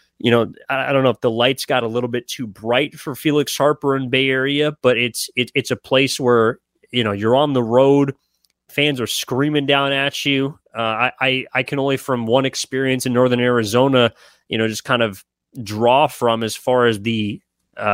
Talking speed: 205 wpm